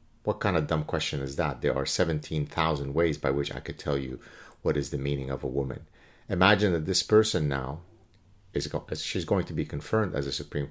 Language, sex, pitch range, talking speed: English, male, 75-110 Hz, 215 wpm